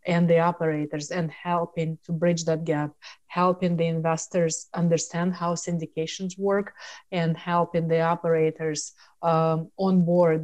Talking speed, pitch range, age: 125 wpm, 160-175 Hz, 30-49